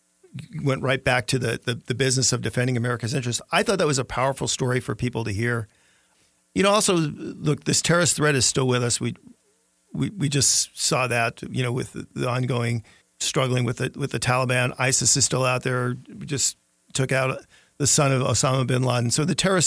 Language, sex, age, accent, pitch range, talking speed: English, male, 40-59, American, 120-150 Hz, 210 wpm